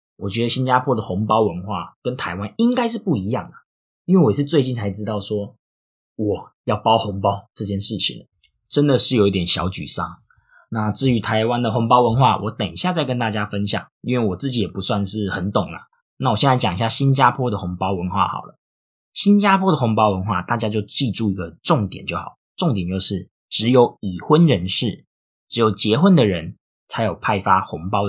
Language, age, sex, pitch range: Chinese, 20-39, male, 100-135 Hz